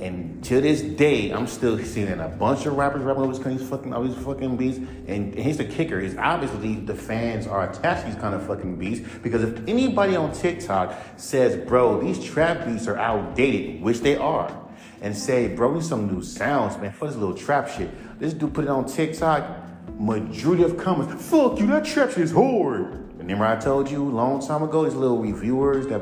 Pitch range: 105-155 Hz